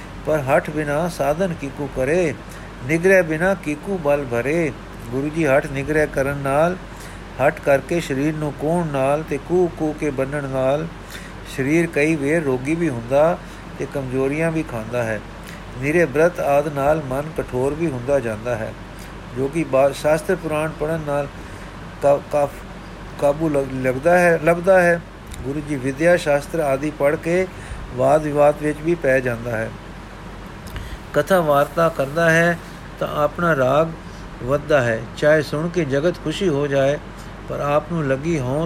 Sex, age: male, 50-69